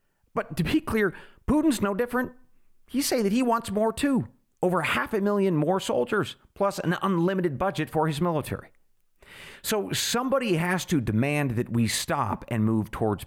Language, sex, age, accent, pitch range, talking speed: English, male, 40-59, American, 120-195 Hz, 170 wpm